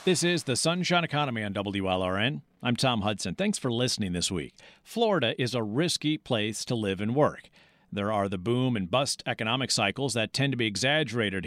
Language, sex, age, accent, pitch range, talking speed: English, male, 50-69, American, 115-150 Hz, 195 wpm